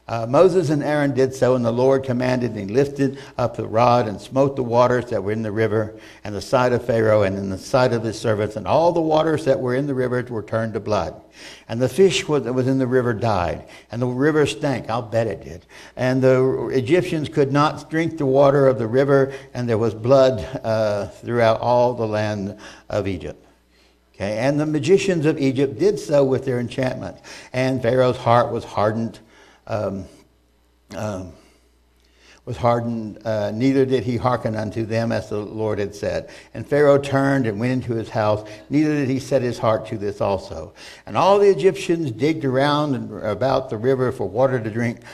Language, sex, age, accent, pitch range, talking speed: English, male, 60-79, American, 110-135 Hz, 200 wpm